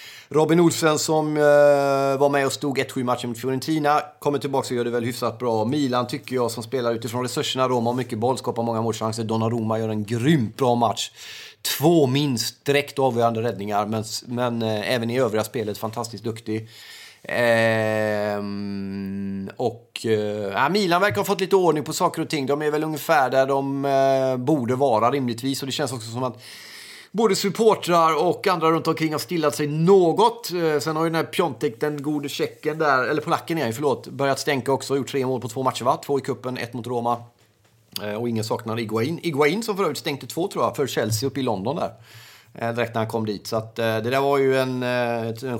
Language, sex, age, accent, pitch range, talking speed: Swedish, male, 30-49, native, 115-150 Hz, 200 wpm